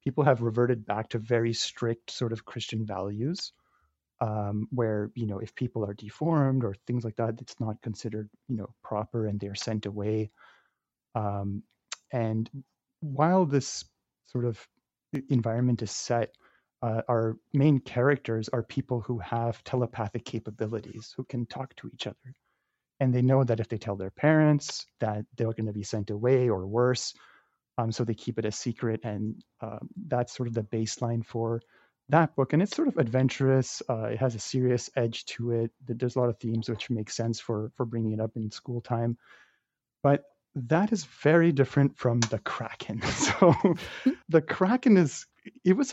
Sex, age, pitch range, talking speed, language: male, 30-49, 110-135 Hz, 180 wpm, English